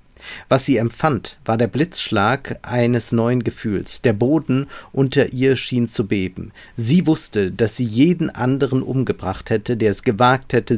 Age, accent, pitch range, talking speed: 50-69, German, 110-140 Hz, 155 wpm